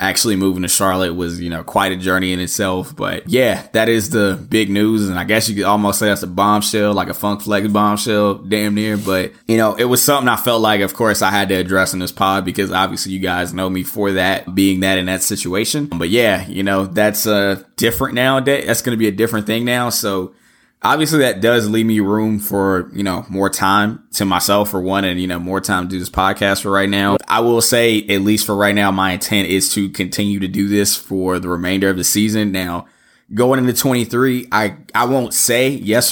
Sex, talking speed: male, 235 wpm